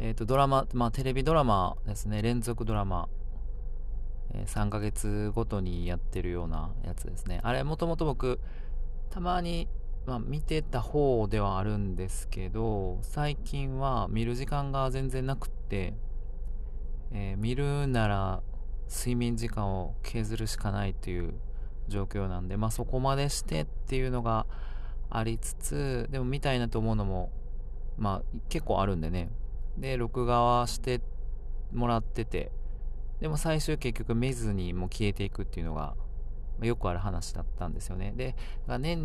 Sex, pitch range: male, 95-125 Hz